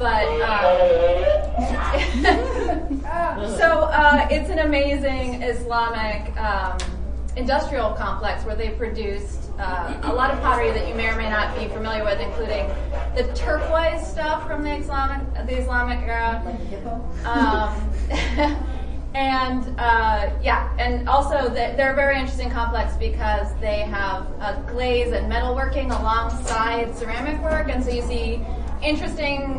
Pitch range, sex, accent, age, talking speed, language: 225-285 Hz, female, American, 20-39, 135 wpm, English